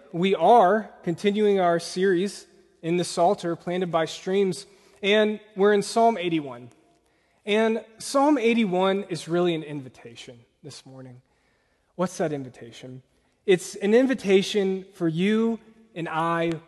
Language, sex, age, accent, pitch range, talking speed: English, male, 30-49, American, 145-195 Hz, 125 wpm